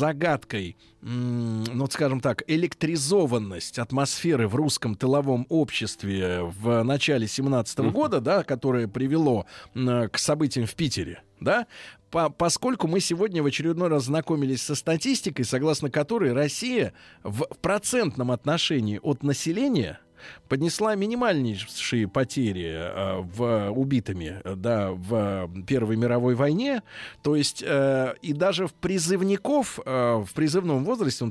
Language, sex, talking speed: Russian, male, 115 wpm